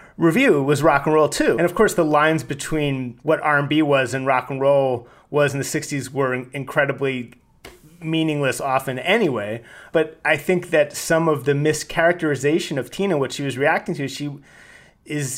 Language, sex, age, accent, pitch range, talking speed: English, male, 30-49, American, 135-160 Hz, 185 wpm